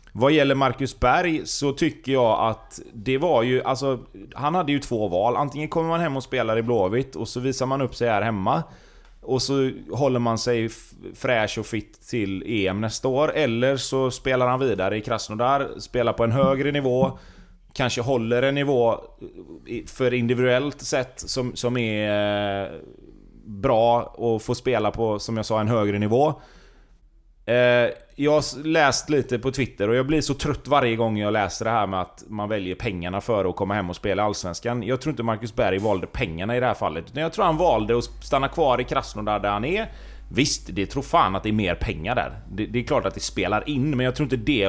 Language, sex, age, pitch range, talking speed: Swedish, male, 30-49, 105-135 Hz, 205 wpm